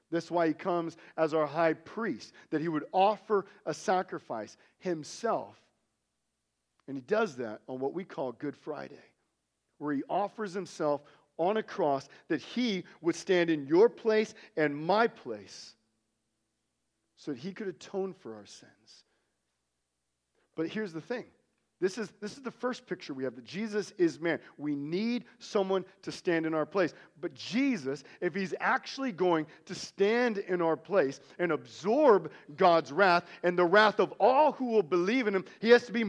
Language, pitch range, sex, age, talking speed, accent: English, 150-210 Hz, male, 40-59, 175 wpm, American